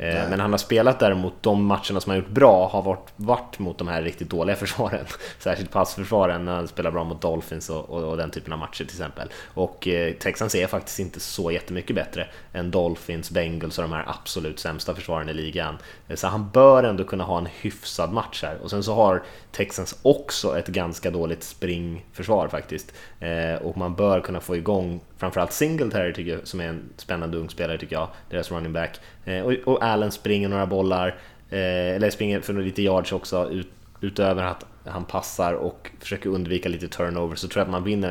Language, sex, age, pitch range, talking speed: Swedish, male, 20-39, 85-100 Hz, 195 wpm